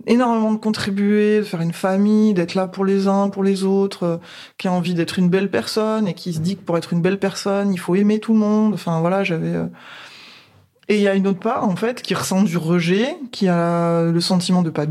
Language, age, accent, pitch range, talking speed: French, 20-39, French, 175-215 Hz, 255 wpm